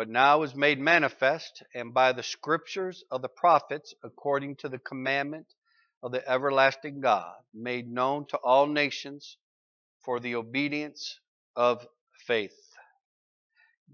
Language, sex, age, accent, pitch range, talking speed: English, male, 50-69, American, 125-150 Hz, 135 wpm